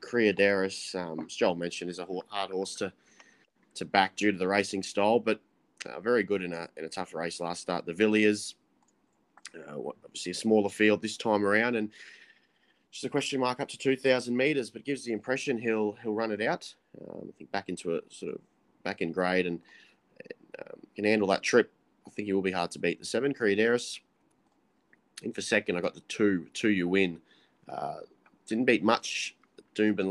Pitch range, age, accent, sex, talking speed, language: 90-110 Hz, 20-39, Australian, male, 200 wpm, English